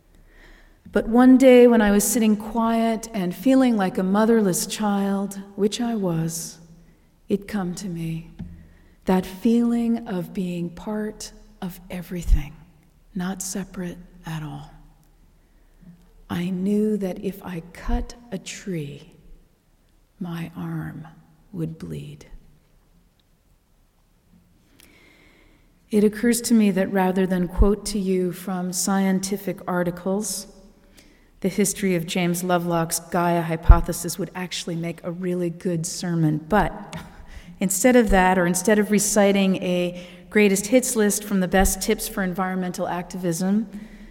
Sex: female